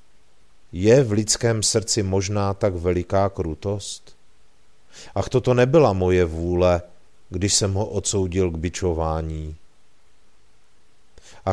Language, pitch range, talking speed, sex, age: Czech, 90-110 Hz, 105 wpm, male, 40-59